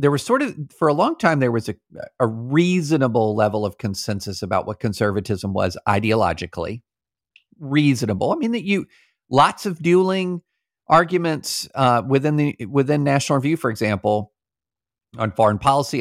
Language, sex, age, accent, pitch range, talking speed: English, male, 50-69, American, 105-145 Hz, 155 wpm